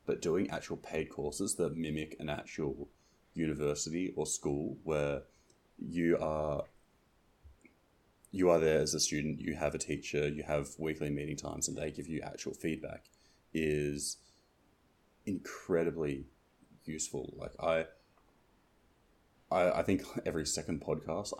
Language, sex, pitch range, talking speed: English, male, 75-80 Hz, 130 wpm